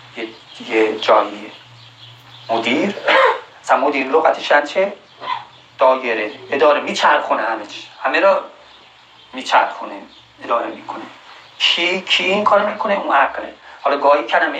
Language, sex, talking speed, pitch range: Persian, male, 110 wpm, 150-210 Hz